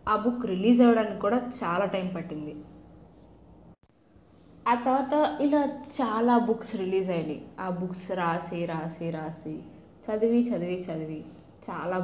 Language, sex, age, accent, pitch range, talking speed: Telugu, female, 20-39, native, 170-220 Hz, 120 wpm